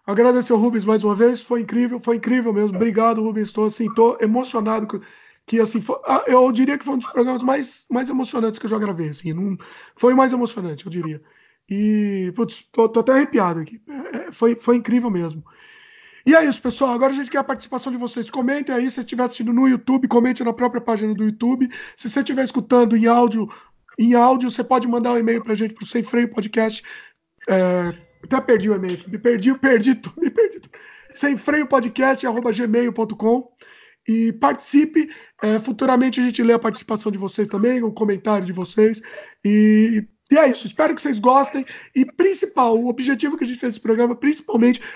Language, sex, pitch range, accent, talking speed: Portuguese, male, 220-270 Hz, Brazilian, 195 wpm